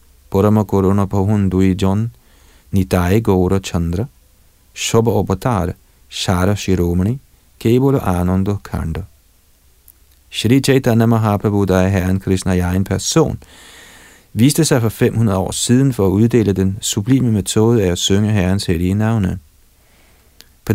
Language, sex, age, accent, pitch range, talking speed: Danish, male, 40-59, native, 90-110 Hz, 115 wpm